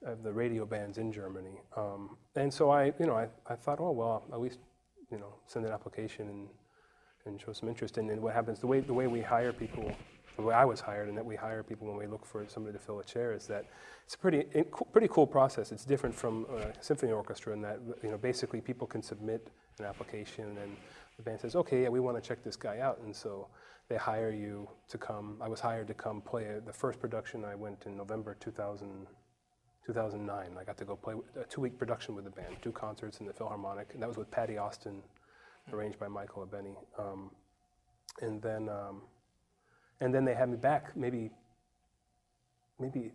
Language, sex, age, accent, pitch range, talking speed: English, male, 30-49, American, 105-120 Hz, 220 wpm